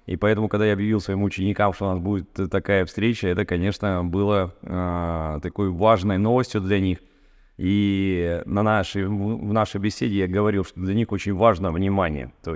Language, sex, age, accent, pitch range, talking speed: Russian, male, 20-39, native, 100-115 Hz, 165 wpm